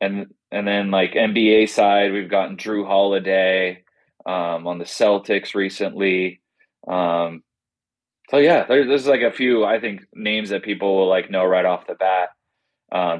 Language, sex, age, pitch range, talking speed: English, male, 20-39, 95-110 Hz, 165 wpm